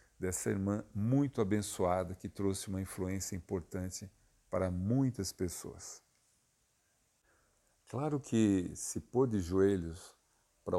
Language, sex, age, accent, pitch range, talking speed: Portuguese, male, 50-69, Brazilian, 95-125 Hz, 105 wpm